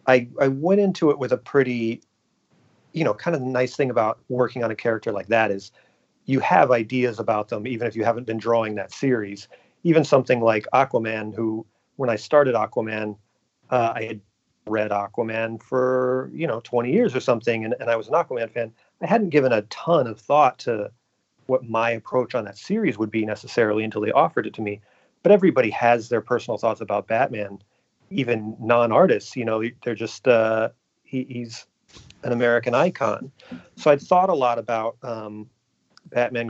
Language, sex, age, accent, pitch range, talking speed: English, male, 40-59, American, 110-125 Hz, 185 wpm